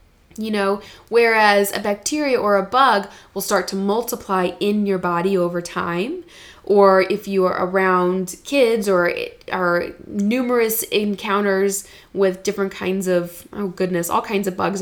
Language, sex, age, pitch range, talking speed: English, female, 20-39, 190-245 Hz, 155 wpm